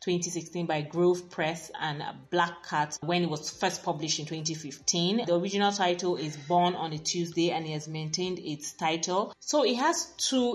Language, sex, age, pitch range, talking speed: English, female, 20-39, 155-185 Hz, 180 wpm